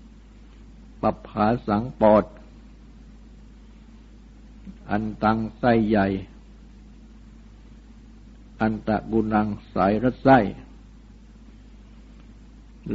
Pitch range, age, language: 110-120 Hz, 60-79, Thai